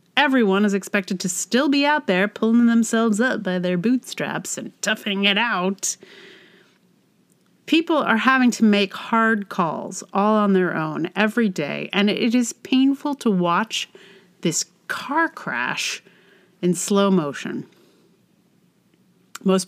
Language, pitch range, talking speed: English, 180-225 Hz, 135 wpm